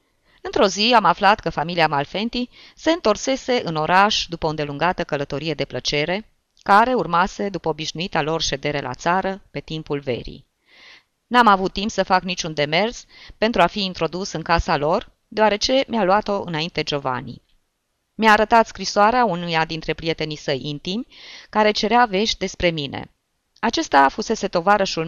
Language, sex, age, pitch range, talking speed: Romanian, female, 20-39, 160-220 Hz, 150 wpm